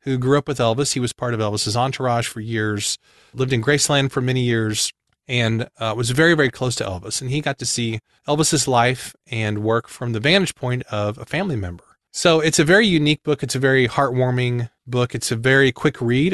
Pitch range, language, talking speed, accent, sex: 110-140 Hz, English, 220 wpm, American, male